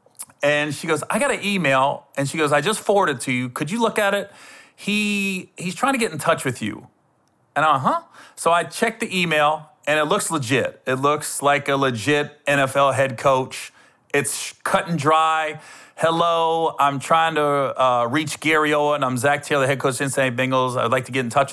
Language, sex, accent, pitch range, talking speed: English, male, American, 140-190 Hz, 210 wpm